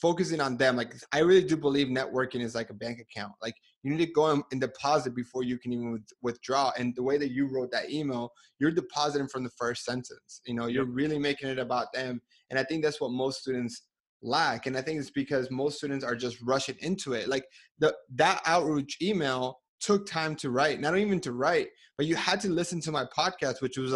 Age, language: 20-39, English